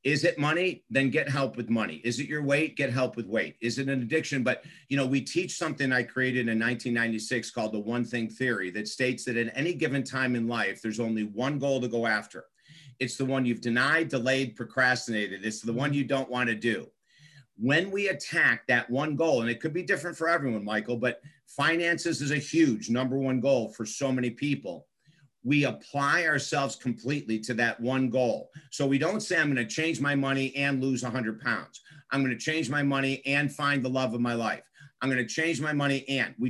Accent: American